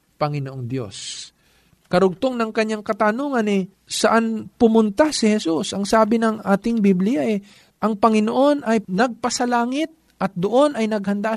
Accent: native